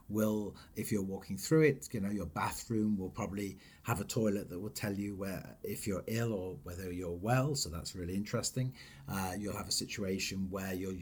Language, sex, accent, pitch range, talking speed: English, male, British, 95-120 Hz, 205 wpm